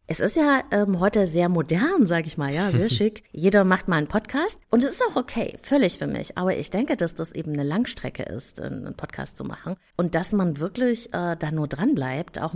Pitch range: 165-225 Hz